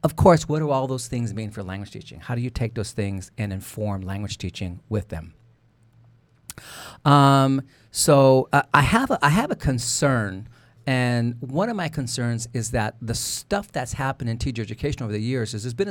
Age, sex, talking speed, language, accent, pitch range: 40-59, male, 200 wpm, English, American, 110-145 Hz